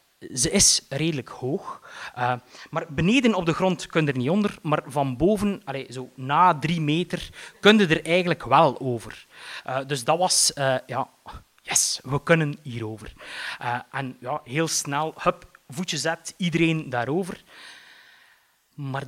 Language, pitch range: Dutch, 135-210 Hz